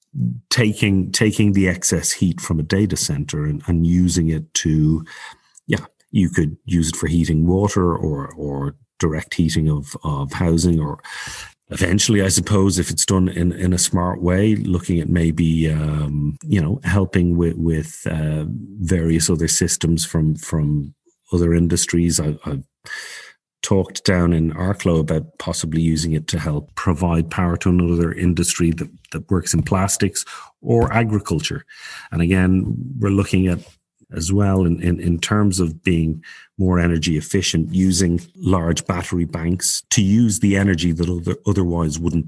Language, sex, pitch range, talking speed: English, male, 80-95 Hz, 155 wpm